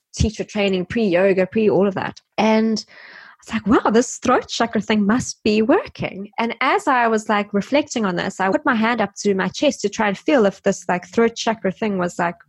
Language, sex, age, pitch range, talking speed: English, female, 20-39, 190-250 Hz, 220 wpm